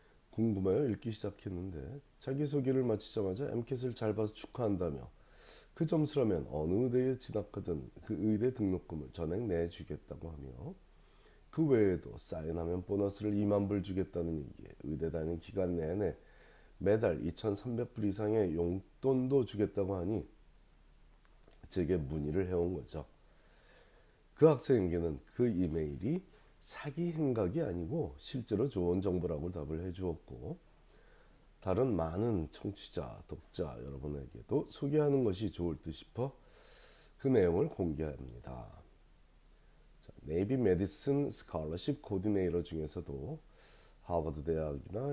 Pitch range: 80-110 Hz